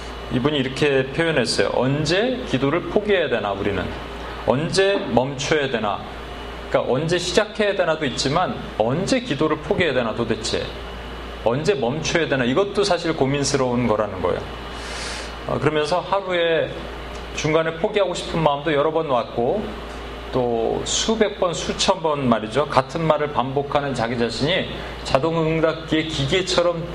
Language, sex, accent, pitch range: Korean, male, native, 120-170 Hz